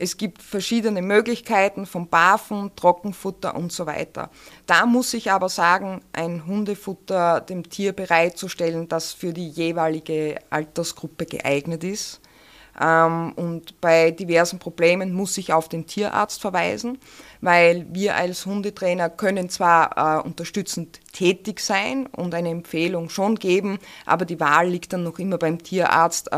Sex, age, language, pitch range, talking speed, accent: female, 20-39, German, 165-195 Hz, 135 wpm, Austrian